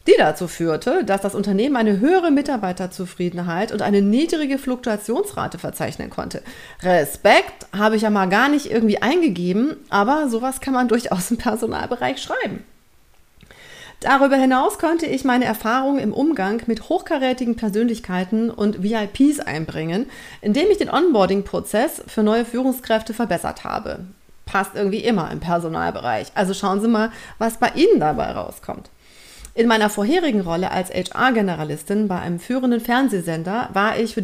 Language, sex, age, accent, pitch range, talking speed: German, female, 30-49, German, 195-260 Hz, 145 wpm